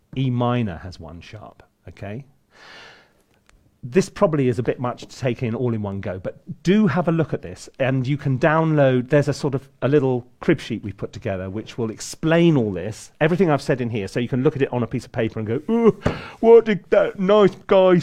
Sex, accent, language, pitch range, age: male, British, Chinese, 115-165 Hz, 40-59